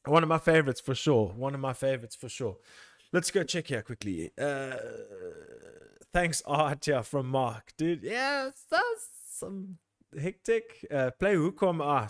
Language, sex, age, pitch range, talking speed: English, male, 20-39, 120-155 Hz, 155 wpm